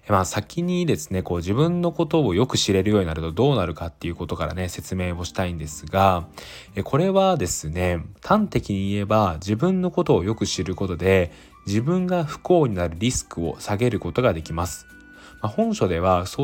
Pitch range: 85-120 Hz